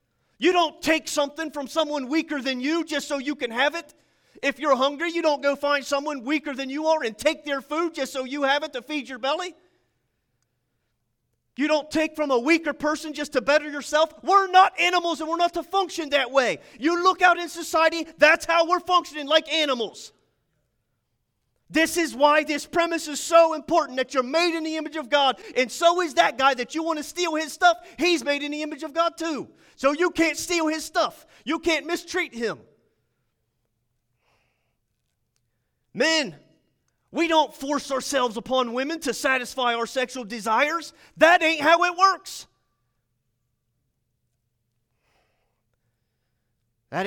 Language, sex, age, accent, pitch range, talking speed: English, male, 30-49, American, 190-320 Hz, 175 wpm